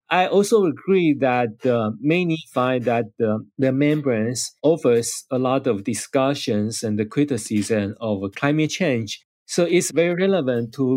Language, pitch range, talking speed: English, 120-155 Hz, 150 wpm